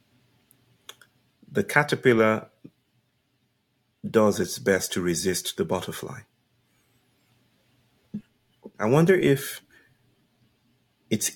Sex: male